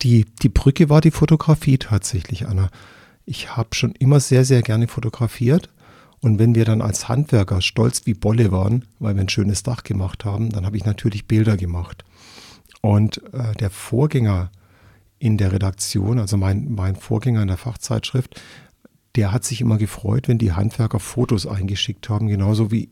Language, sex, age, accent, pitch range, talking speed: German, male, 50-69, German, 100-120 Hz, 175 wpm